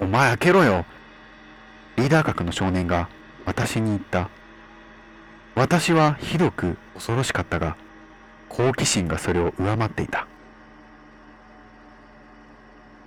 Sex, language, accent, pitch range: male, Japanese, native, 85-120 Hz